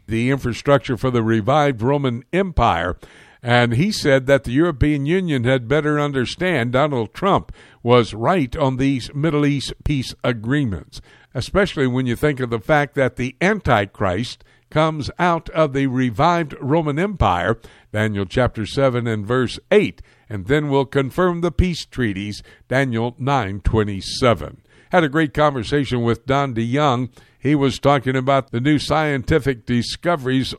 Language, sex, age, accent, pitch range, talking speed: English, male, 60-79, American, 120-145 Hz, 145 wpm